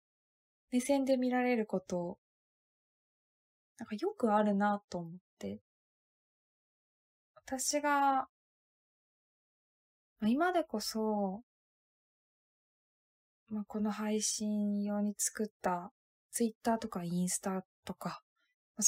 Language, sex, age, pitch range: Japanese, female, 20-39, 190-245 Hz